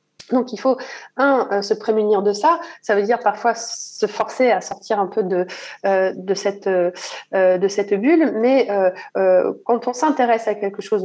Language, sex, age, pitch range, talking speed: French, female, 30-49, 200-265 Hz, 170 wpm